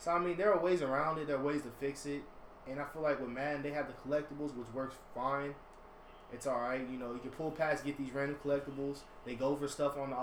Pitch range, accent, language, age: 130-150 Hz, American, English, 20-39